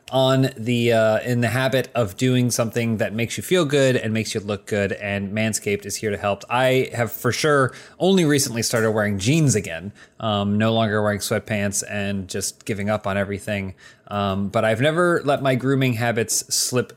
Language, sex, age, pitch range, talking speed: English, male, 20-39, 110-140 Hz, 195 wpm